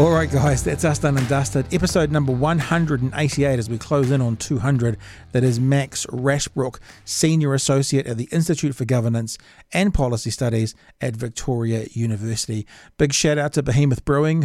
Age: 40-59